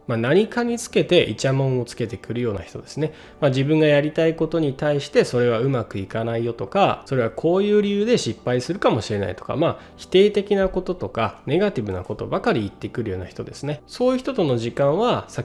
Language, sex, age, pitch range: Japanese, male, 20-39, 115-165 Hz